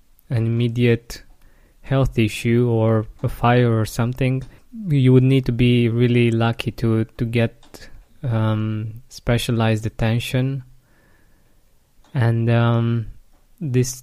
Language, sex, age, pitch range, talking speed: English, male, 20-39, 115-130 Hz, 105 wpm